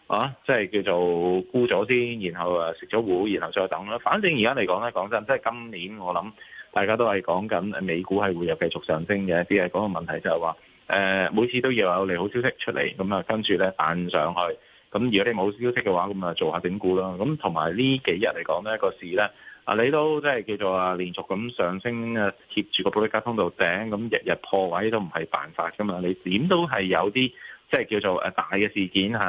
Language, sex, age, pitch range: Chinese, male, 20-39, 95-120 Hz